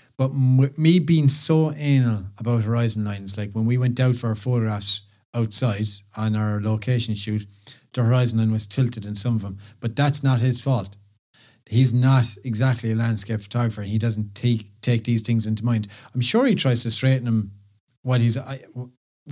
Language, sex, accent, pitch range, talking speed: English, male, Irish, 105-125 Hz, 185 wpm